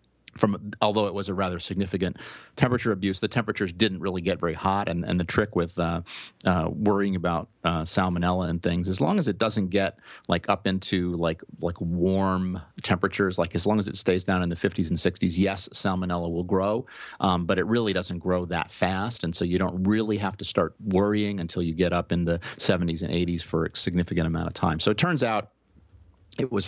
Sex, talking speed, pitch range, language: male, 215 wpm, 85-100 Hz, English